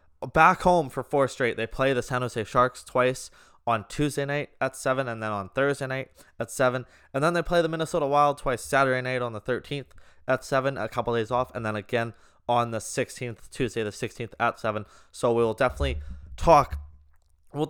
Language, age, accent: English, 20-39, American